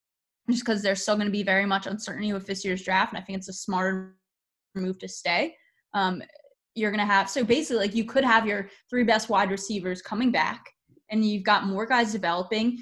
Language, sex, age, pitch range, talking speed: English, female, 20-39, 195-230 Hz, 220 wpm